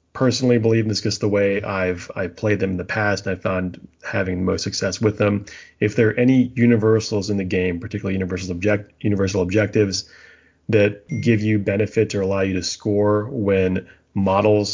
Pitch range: 95-110 Hz